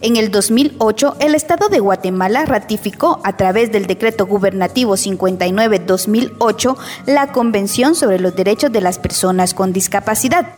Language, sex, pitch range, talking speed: Spanish, female, 195-275 Hz, 135 wpm